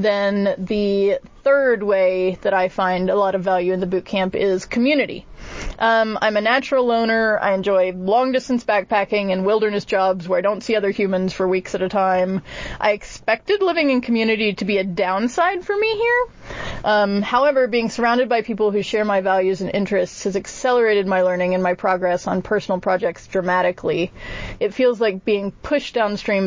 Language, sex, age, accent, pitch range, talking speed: English, female, 30-49, American, 190-230 Hz, 180 wpm